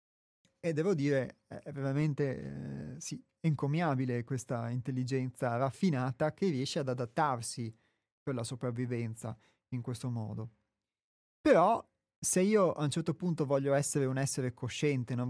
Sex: male